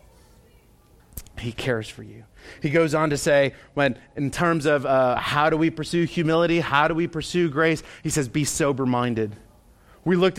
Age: 30-49